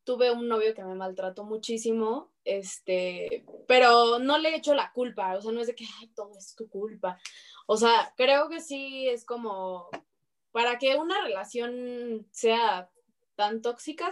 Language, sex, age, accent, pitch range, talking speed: Spanish, female, 20-39, Mexican, 210-255 Hz, 165 wpm